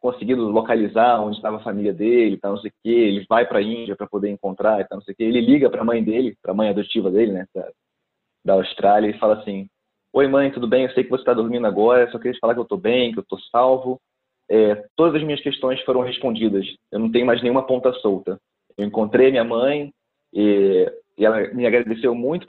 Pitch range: 105-140 Hz